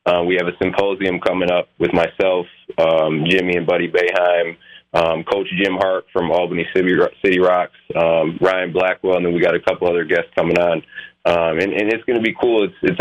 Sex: male